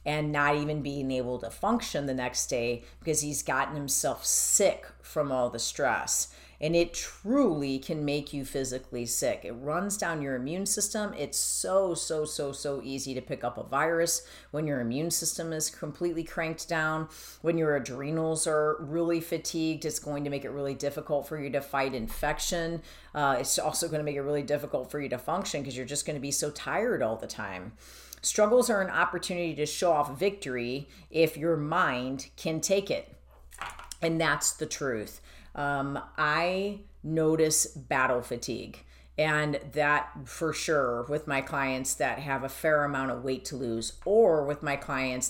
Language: English